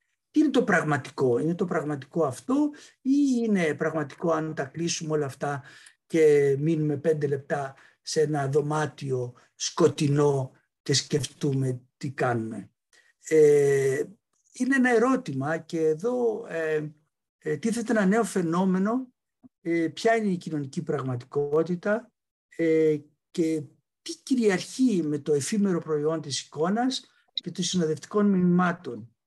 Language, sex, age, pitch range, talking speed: Greek, male, 60-79, 150-225 Hz, 120 wpm